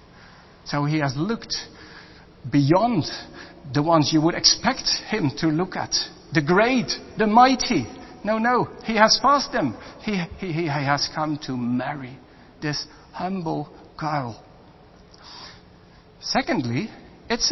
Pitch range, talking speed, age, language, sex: 155-230 Hz, 125 wpm, 60-79, English, male